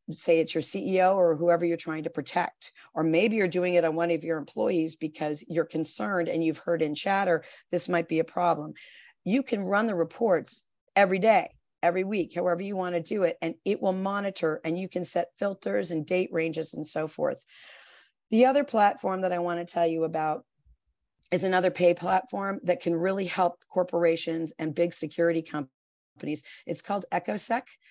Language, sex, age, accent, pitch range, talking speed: English, female, 40-59, American, 160-190 Hz, 195 wpm